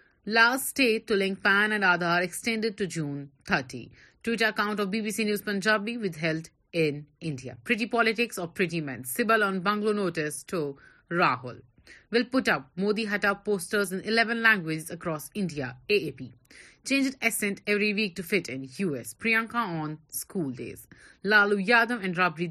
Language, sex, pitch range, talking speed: Urdu, female, 160-225 Hz, 155 wpm